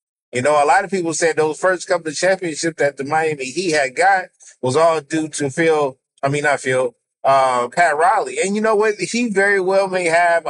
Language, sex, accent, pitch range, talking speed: English, male, American, 160-210 Hz, 225 wpm